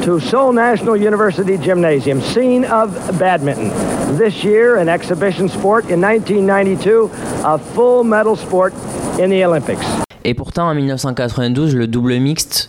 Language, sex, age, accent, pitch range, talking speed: French, male, 30-49, French, 105-135 Hz, 135 wpm